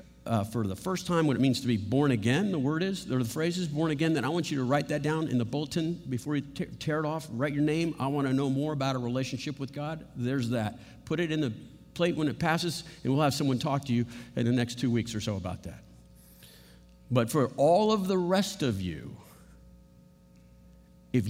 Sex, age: male, 50-69